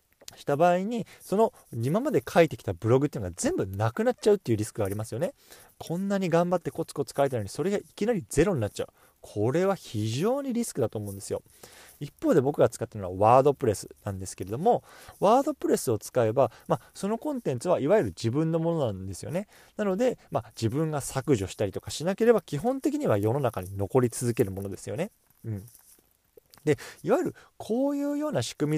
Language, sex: Japanese, male